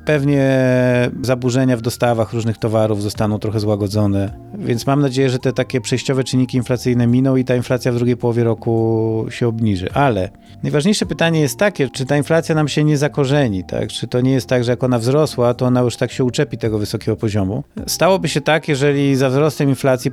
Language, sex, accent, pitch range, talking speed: Polish, male, native, 110-135 Hz, 195 wpm